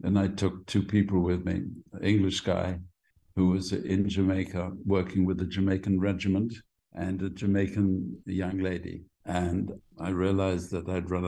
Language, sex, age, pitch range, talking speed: English, male, 60-79, 90-100 Hz, 160 wpm